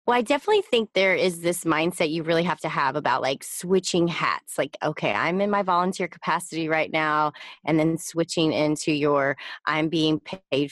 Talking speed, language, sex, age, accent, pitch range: 190 wpm, English, female, 20-39, American, 160-200 Hz